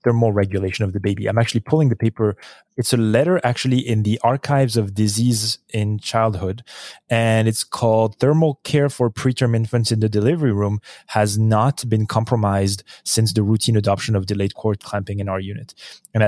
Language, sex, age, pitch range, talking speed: English, male, 20-39, 105-120 Hz, 180 wpm